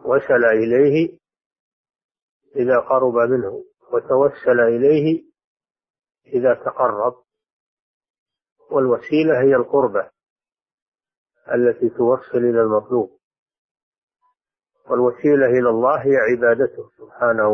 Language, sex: Arabic, male